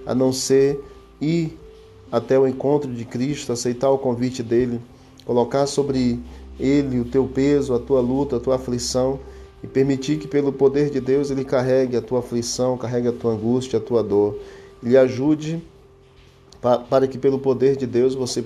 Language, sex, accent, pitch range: Portuguese, male, Brazilian, 120-135 Hz